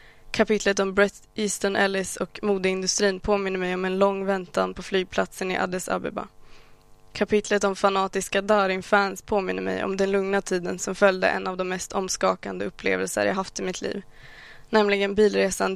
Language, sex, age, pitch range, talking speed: Swedish, female, 20-39, 185-200 Hz, 170 wpm